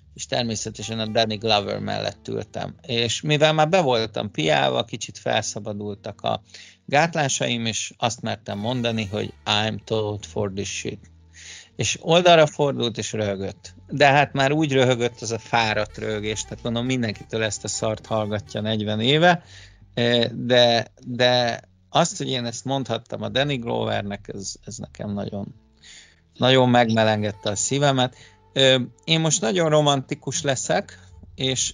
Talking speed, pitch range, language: 140 wpm, 105-130 Hz, Hungarian